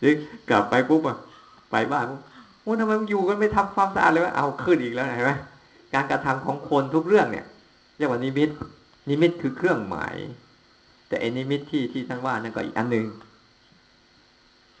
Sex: male